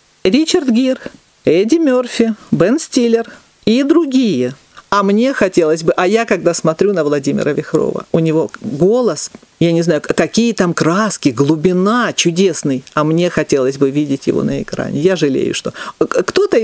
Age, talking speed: 40-59, 150 wpm